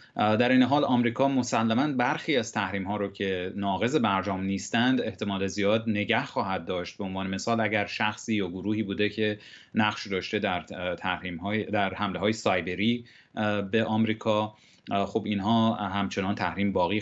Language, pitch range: Persian, 95-115 Hz